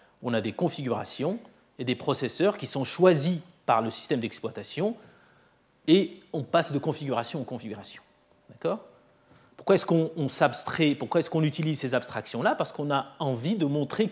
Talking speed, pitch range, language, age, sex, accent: 165 wpm, 125-185 Hz, French, 30-49, male, French